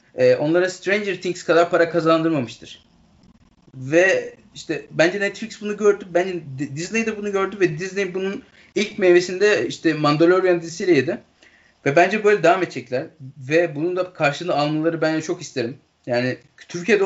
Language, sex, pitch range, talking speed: Turkish, male, 140-190 Hz, 140 wpm